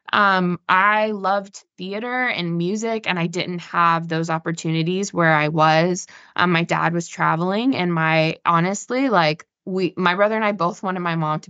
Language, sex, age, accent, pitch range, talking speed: English, female, 20-39, American, 170-210 Hz, 175 wpm